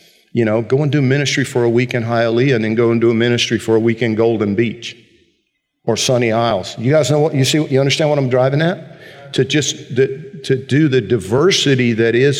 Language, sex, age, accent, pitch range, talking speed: English, male, 50-69, American, 110-135 Hz, 230 wpm